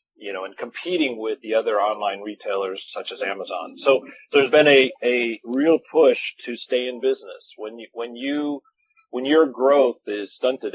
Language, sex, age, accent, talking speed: English, male, 40-59, American, 180 wpm